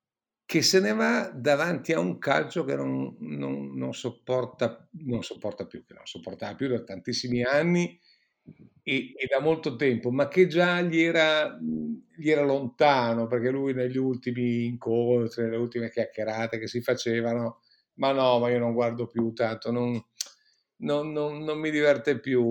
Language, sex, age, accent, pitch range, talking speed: Italian, male, 50-69, native, 115-135 Hz, 165 wpm